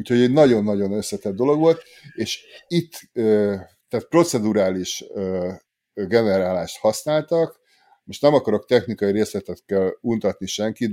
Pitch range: 100-125 Hz